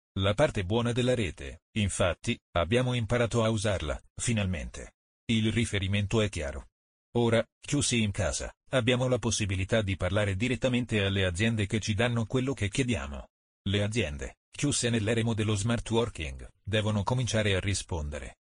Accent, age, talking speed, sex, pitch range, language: native, 40-59, 145 wpm, male, 100-120 Hz, Italian